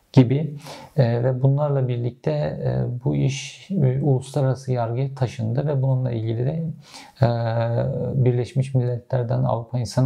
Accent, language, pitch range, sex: native, Turkish, 115-135 Hz, male